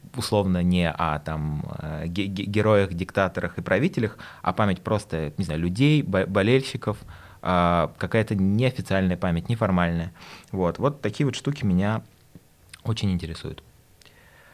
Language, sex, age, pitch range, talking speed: Russian, male, 20-39, 90-120 Hz, 110 wpm